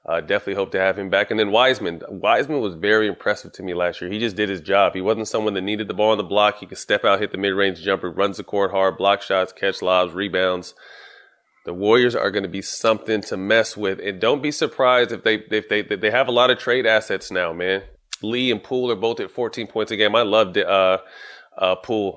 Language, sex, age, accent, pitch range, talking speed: English, male, 30-49, American, 95-125 Hz, 255 wpm